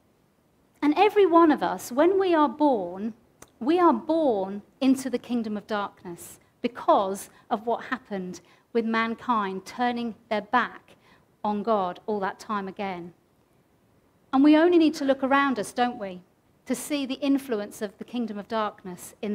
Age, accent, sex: 50-69, British, female